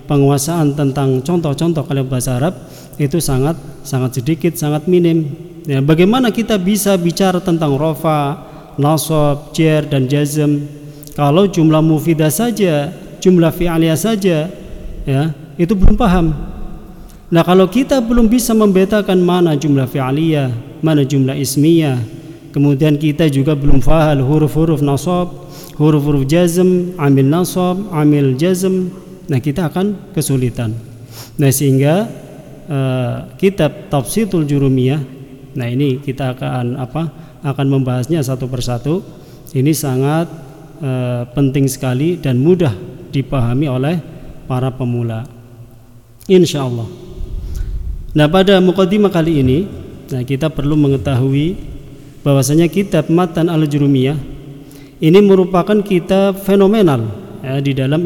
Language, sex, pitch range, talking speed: Indonesian, male, 135-175 Hz, 115 wpm